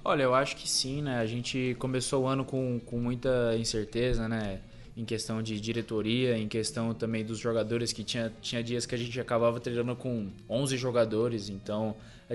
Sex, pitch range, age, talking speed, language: male, 110-120 Hz, 20-39, 190 wpm, Portuguese